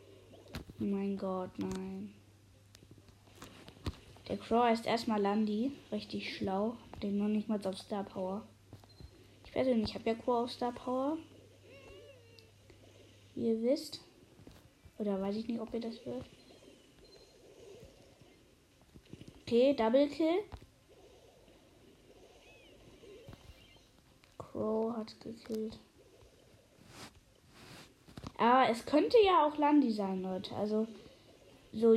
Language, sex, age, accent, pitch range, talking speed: German, female, 20-39, German, 190-245 Hz, 105 wpm